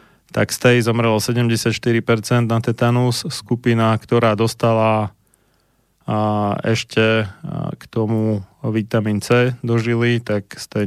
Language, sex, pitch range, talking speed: Slovak, male, 105-120 Hz, 115 wpm